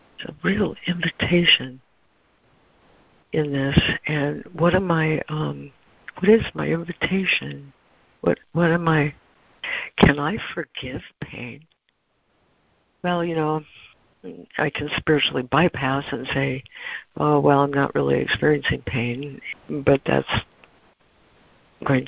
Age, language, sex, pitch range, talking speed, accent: 60-79, English, female, 135-165 Hz, 110 wpm, American